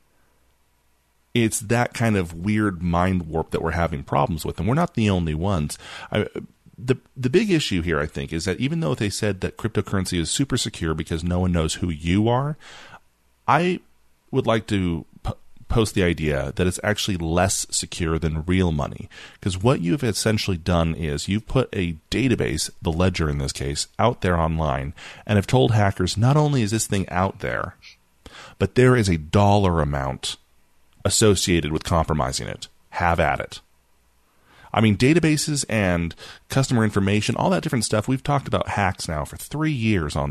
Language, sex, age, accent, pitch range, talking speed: English, male, 30-49, American, 80-115 Hz, 175 wpm